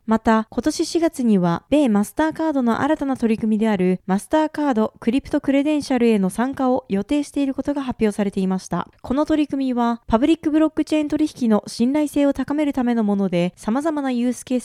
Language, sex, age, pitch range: Japanese, female, 20-39, 210-285 Hz